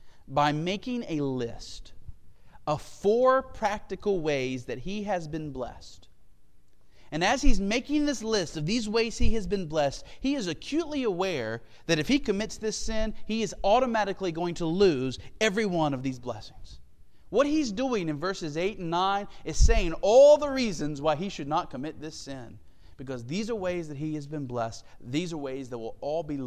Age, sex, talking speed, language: 40-59, male, 190 wpm, English